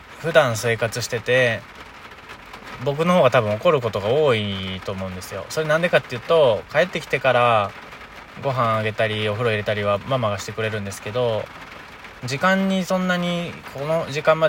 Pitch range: 105-130 Hz